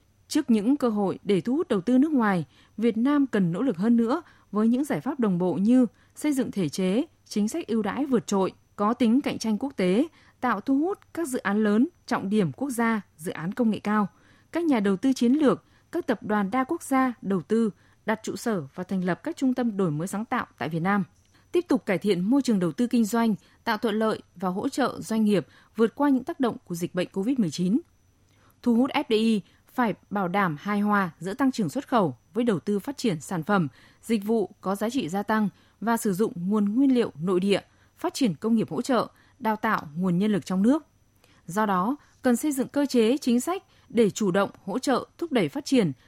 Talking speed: 235 wpm